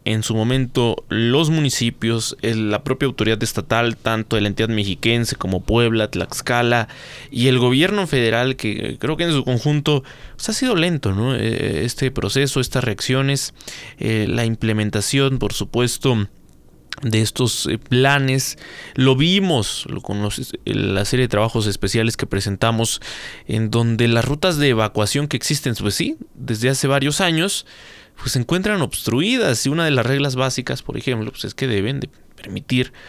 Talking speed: 155 wpm